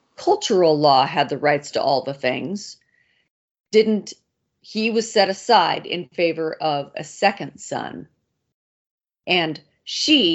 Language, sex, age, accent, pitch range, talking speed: English, female, 40-59, American, 155-215 Hz, 130 wpm